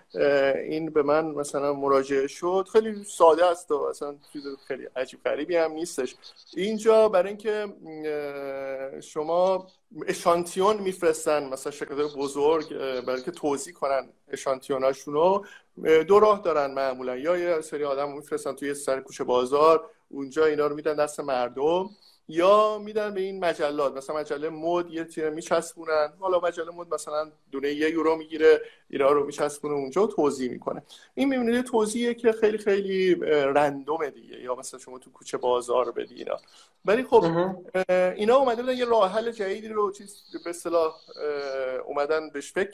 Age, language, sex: 50-69, Persian, male